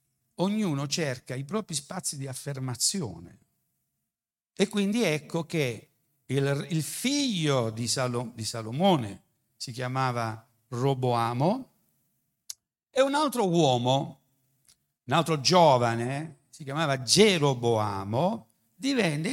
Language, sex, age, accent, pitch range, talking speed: Italian, male, 60-79, native, 120-170 Hz, 100 wpm